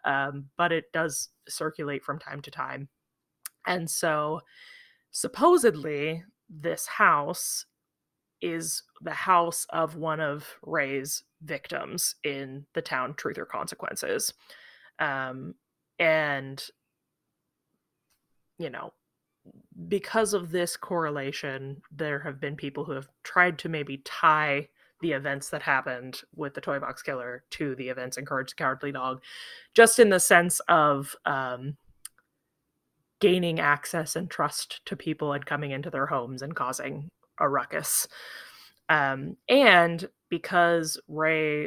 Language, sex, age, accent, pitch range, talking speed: English, female, 20-39, American, 140-170 Hz, 125 wpm